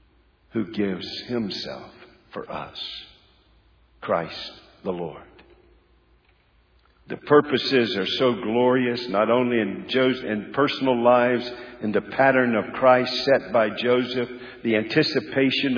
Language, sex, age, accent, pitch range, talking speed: English, male, 50-69, American, 110-145 Hz, 115 wpm